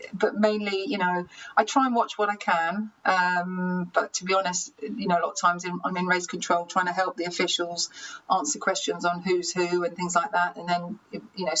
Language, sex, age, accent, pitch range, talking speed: English, female, 30-49, British, 175-195 Hz, 230 wpm